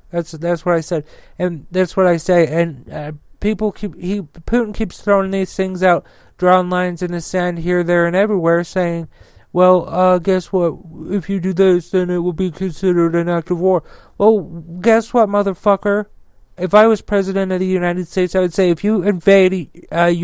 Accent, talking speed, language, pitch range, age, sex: American, 200 wpm, English, 165-190 Hz, 40-59, male